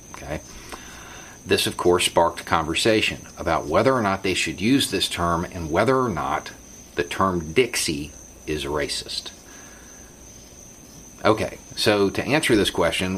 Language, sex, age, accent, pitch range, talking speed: English, male, 40-59, American, 80-95 Hz, 130 wpm